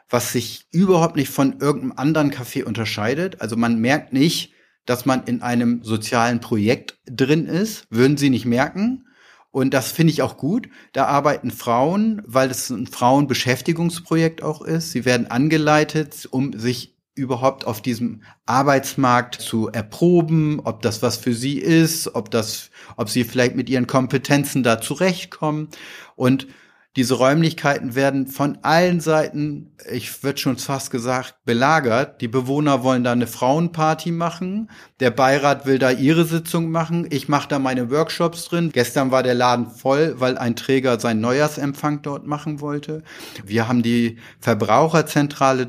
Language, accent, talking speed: German, German, 155 wpm